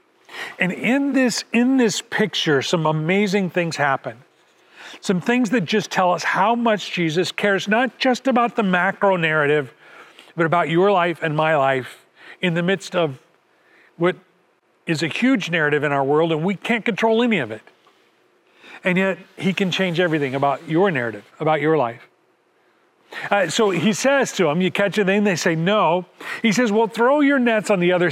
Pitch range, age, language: 160-235 Hz, 40-59, English